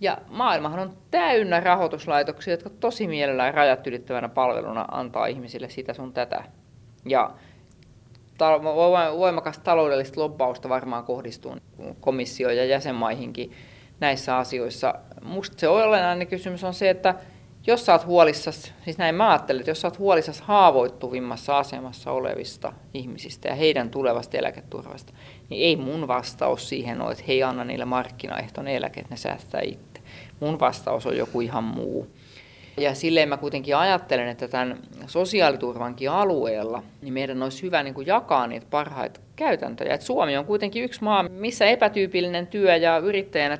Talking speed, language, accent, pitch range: 140 wpm, Finnish, native, 125-180 Hz